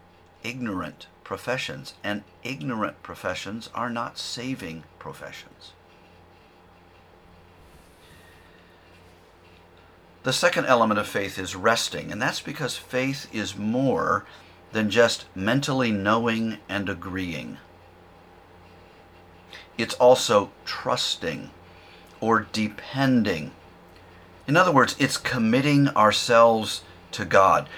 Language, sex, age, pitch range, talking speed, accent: English, male, 50-69, 90-115 Hz, 90 wpm, American